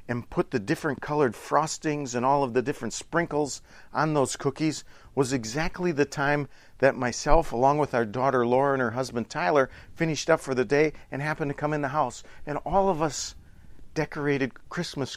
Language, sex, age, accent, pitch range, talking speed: English, male, 40-59, American, 125-180 Hz, 190 wpm